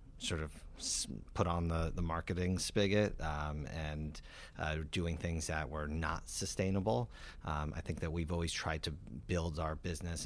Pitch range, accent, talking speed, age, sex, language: 80-90 Hz, American, 165 wpm, 30-49, male, English